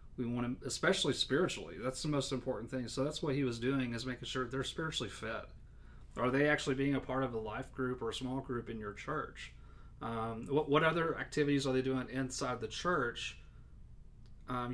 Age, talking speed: 30-49, 210 wpm